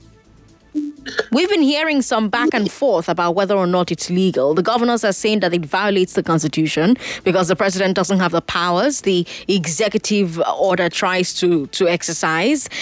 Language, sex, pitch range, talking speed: English, female, 180-255 Hz, 170 wpm